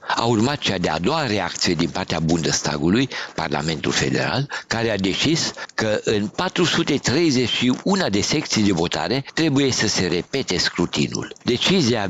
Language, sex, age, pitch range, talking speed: Romanian, male, 60-79, 90-125 Hz, 140 wpm